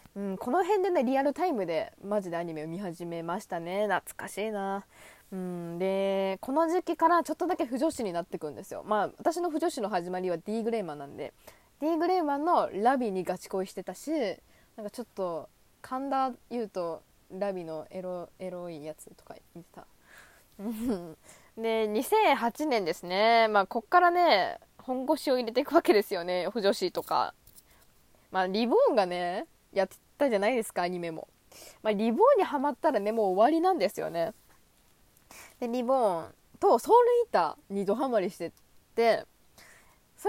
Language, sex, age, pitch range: Japanese, female, 20-39, 190-290 Hz